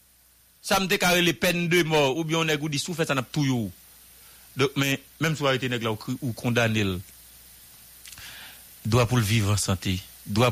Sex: male